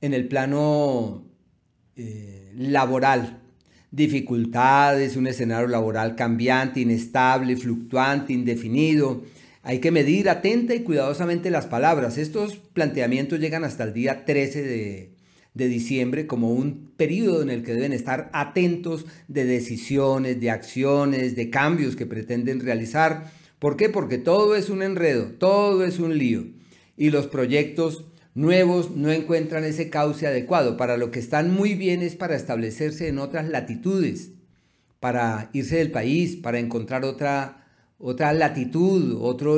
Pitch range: 120-160 Hz